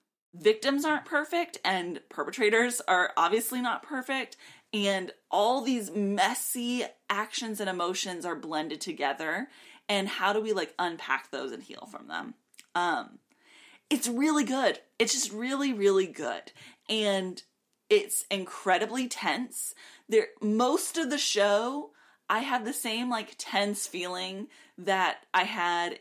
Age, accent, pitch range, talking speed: 20-39, American, 185-255 Hz, 135 wpm